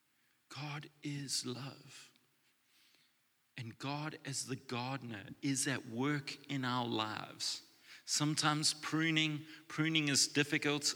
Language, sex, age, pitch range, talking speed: English, male, 30-49, 110-145 Hz, 105 wpm